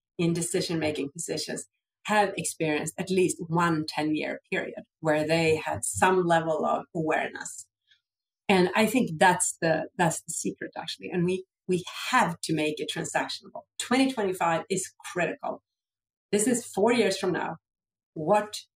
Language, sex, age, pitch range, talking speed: English, female, 40-59, 155-220 Hz, 145 wpm